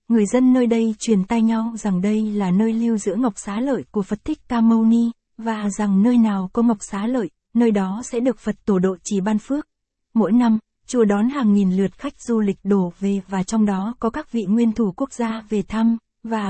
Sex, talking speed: female, 235 wpm